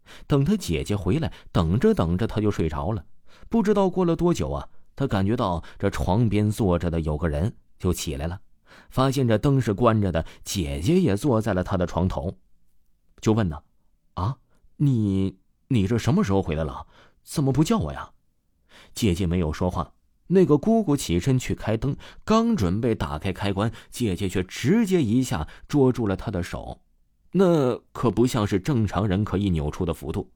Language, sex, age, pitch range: Chinese, male, 30-49, 85-130 Hz